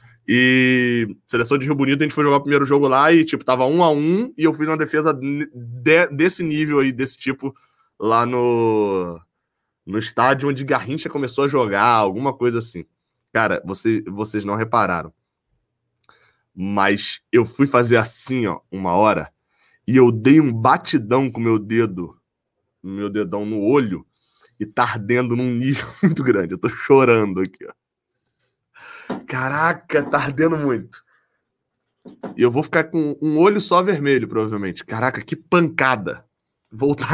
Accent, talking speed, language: Brazilian, 155 wpm, Portuguese